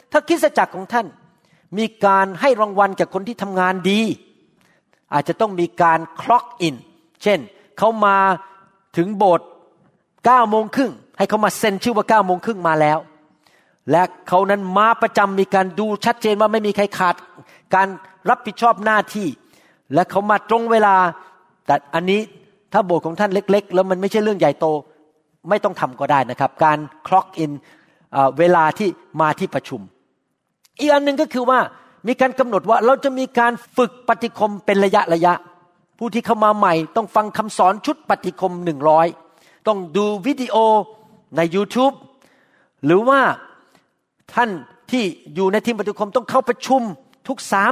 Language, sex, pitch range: Thai, male, 175-235 Hz